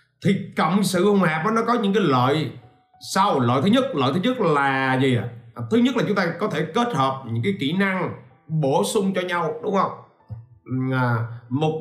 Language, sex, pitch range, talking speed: Vietnamese, male, 125-185 Hz, 210 wpm